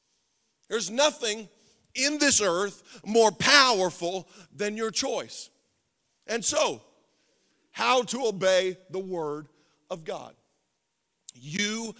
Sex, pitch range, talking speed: male, 155-215 Hz, 100 wpm